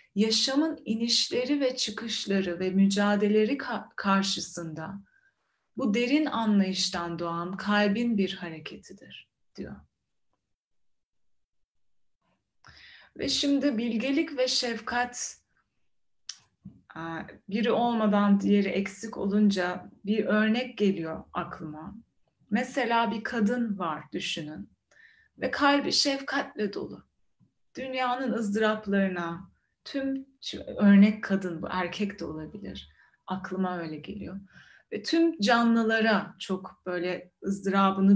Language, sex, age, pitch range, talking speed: Turkish, female, 30-49, 180-230 Hz, 90 wpm